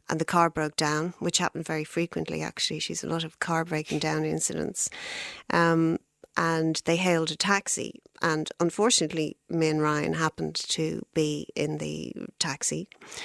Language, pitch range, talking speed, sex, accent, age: English, 145-165 Hz, 150 wpm, female, Irish, 30-49